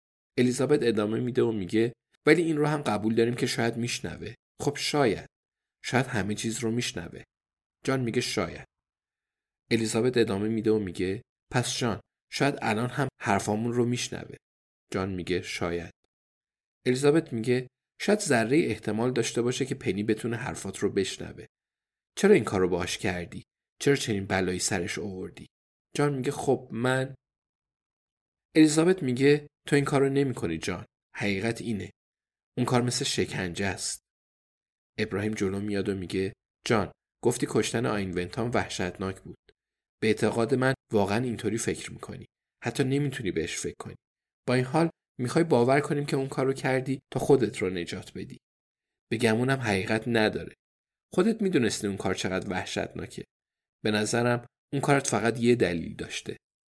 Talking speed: 145 wpm